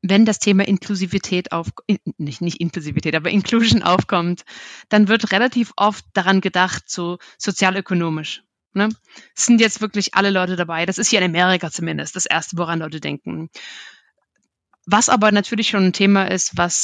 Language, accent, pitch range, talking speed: German, German, 185-220 Hz, 160 wpm